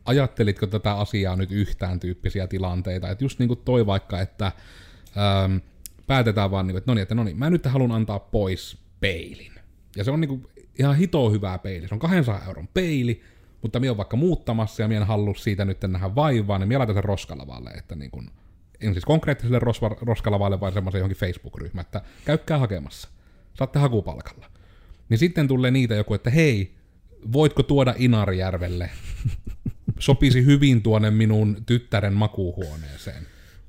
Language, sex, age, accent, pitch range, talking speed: Finnish, male, 30-49, native, 95-120 Hz, 165 wpm